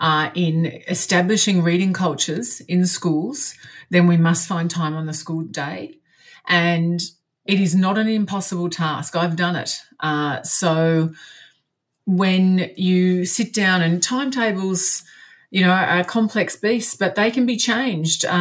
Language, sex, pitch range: English, female, 170-225 Hz